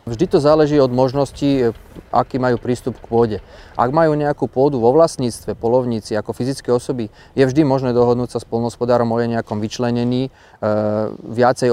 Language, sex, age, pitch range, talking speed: Slovak, male, 30-49, 105-125 Hz, 170 wpm